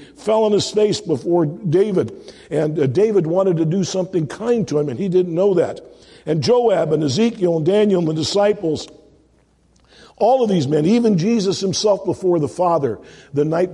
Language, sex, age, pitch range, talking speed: English, male, 50-69, 150-195 Hz, 180 wpm